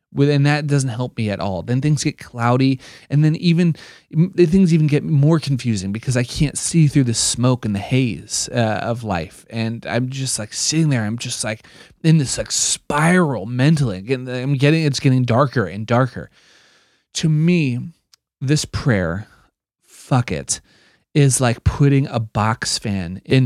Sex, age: male, 30-49